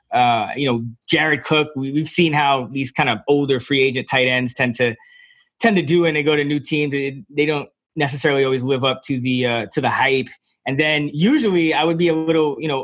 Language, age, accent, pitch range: English, 20-39, American, 130-160 Hz